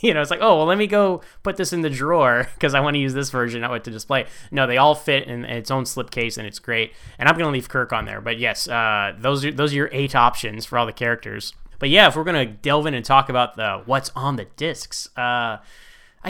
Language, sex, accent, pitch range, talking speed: English, male, American, 120-170 Hz, 270 wpm